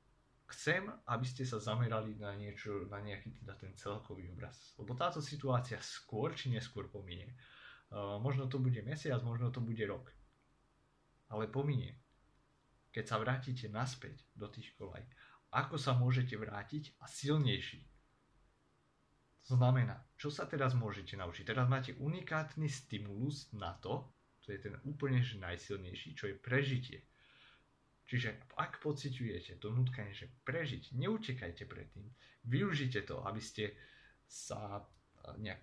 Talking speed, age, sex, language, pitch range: 135 wpm, 30-49, male, Slovak, 105-135 Hz